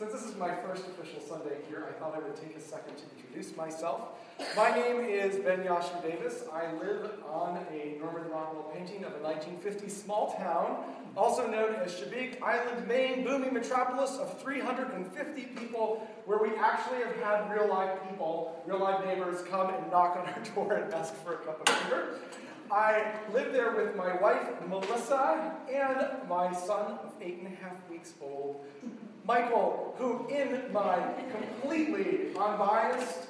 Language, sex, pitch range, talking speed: English, male, 170-240 Hz, 165 wpm